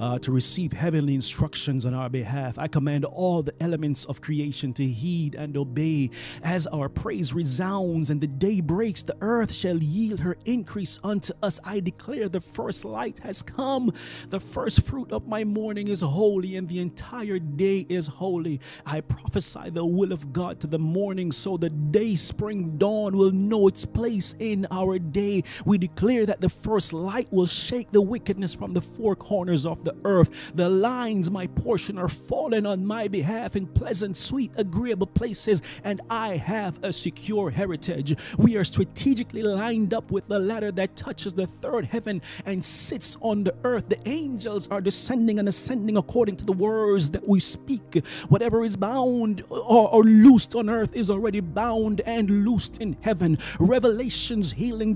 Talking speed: 175 wpm